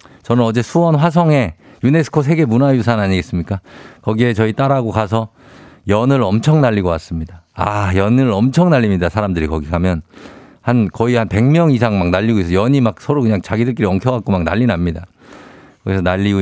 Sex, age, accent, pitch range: male, 50-69, native, 100-145 Hz